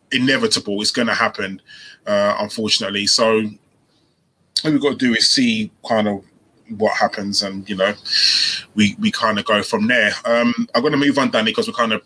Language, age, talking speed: English, 20-39, 190 wpm